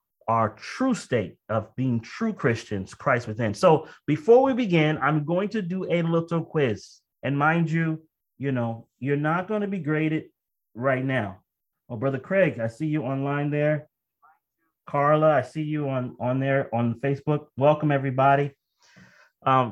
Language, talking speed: English, 160 wpm